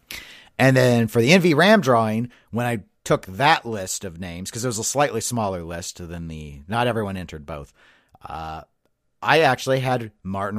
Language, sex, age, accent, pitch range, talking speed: English, male, 40-59, American, 100-135 Hz, 175 wpm